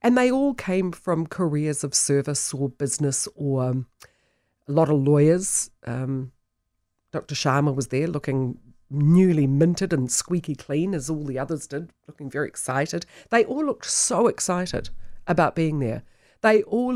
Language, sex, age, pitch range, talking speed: English, female, 40-59, 135-175 Hz, 160 wpm